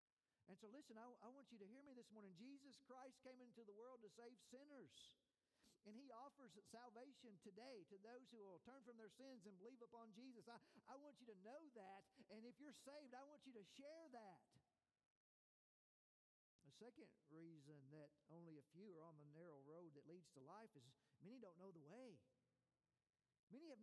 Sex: male